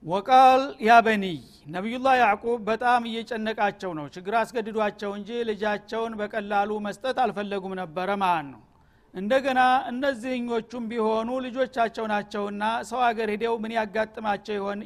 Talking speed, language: 115 wpm, Amharic